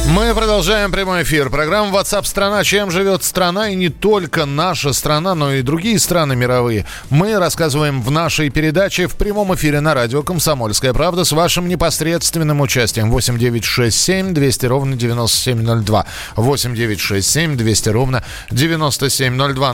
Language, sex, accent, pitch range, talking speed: Russian, male, native, 125-170 Hz, 130 wpm